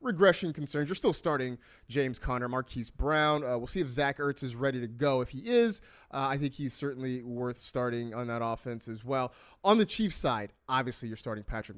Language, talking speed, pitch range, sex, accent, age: English, 215 wpm, 120-165 Hz, male, American, 30-49